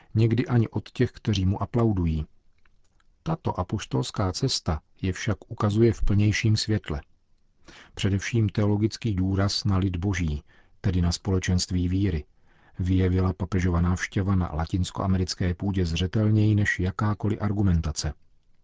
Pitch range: 90-110 Hz